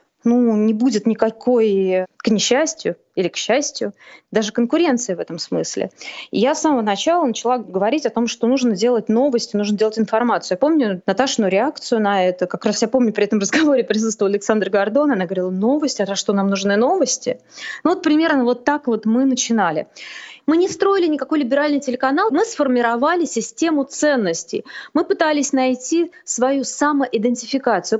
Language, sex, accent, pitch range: Russian, female, native, 225-290 Hz